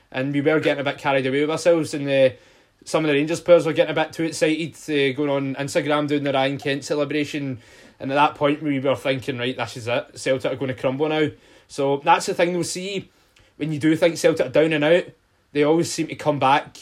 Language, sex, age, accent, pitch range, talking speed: English, male, 20-39, British, 130-155 Hz, 250 wpm